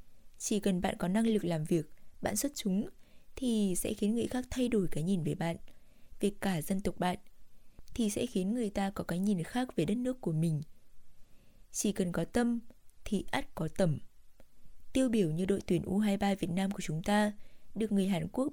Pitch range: 180-230 Hz